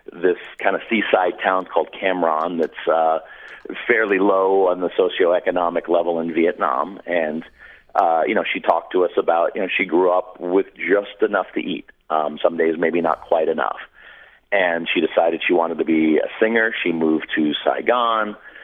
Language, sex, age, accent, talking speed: English, male, 40-59, American, 180 wpm